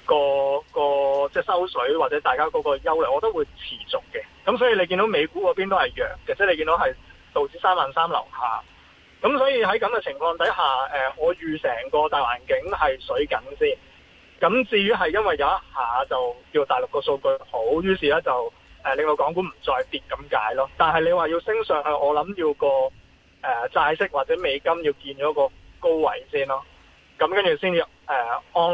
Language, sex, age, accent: Chinese, male, 20-39, native